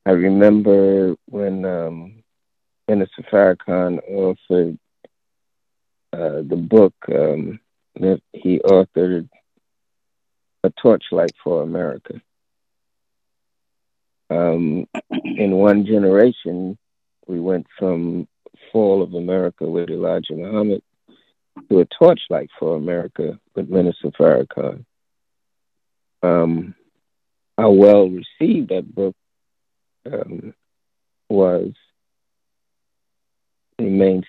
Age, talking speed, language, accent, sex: 50-69, 80 wpm, English, American, male